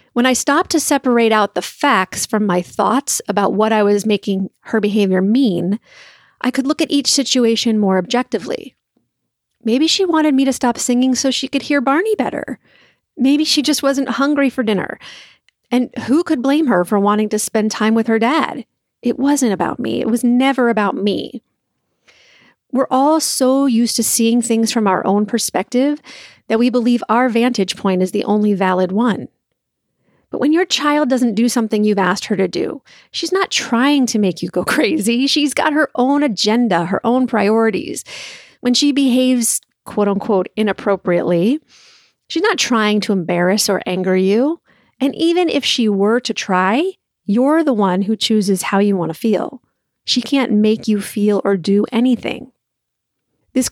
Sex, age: female, 40-59